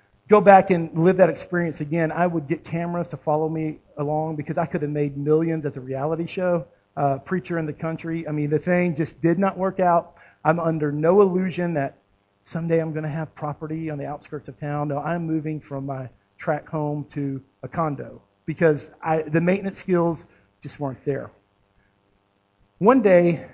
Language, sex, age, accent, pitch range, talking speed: English, male, 40-59, American, 145-175 Hz, 190 wpm